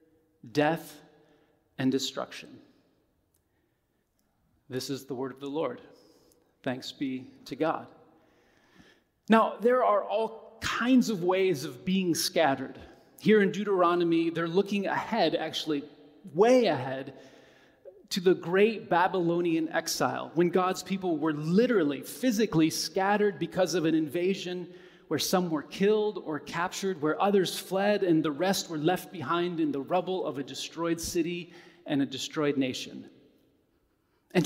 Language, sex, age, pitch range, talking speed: English, male, 30-49, 155-195 Hz, 130 wpm